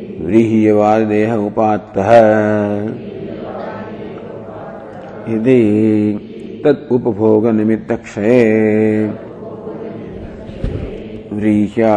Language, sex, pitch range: English, male, 105-110 Hz